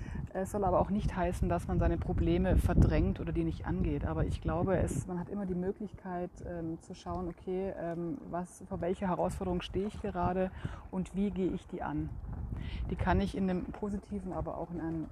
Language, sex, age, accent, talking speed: German, female, 30-49, German, 200 wpm